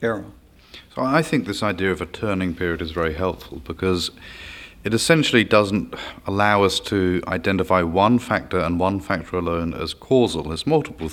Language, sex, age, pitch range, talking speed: English, male, 40-59, 85-105 Hz, 160 wpm